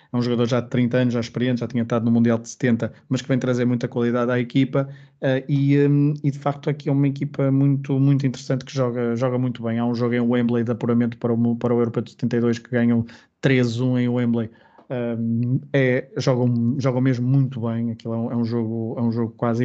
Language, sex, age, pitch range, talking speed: Portuguese, male, 20-39, 120-135 Hz, 240 wpm